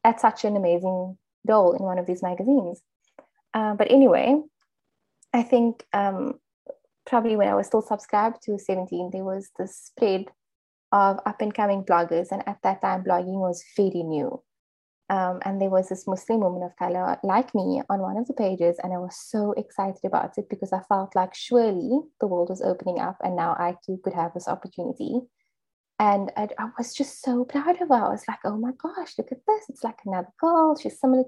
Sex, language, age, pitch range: female, English, 20-39, 185-245 Hz